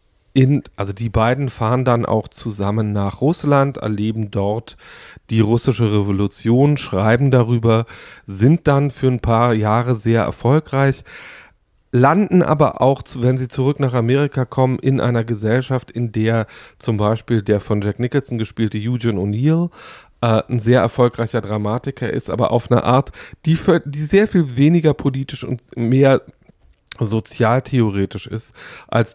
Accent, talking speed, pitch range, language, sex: German, 140 wpm, 110-130 Hz, German, male